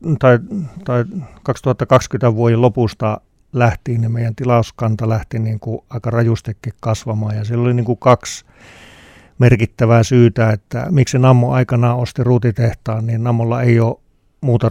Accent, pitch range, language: native, 110-120 Hz, Finnish